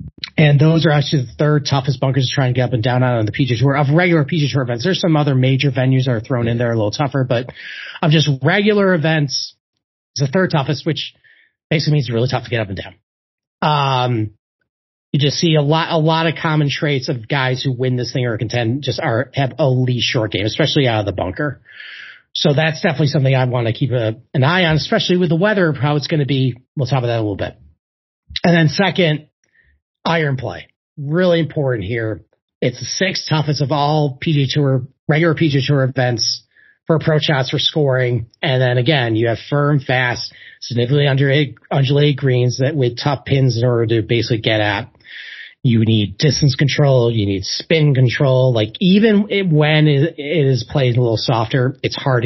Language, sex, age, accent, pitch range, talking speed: English, male, 30-49, American, 120-150 Hz, 210 wpm